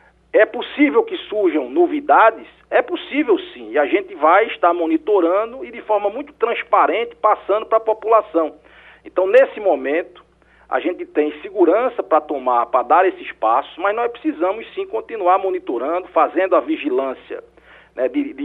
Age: 40-59